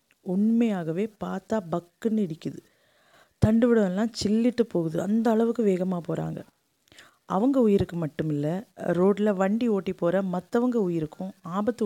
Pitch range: 165-215 Hz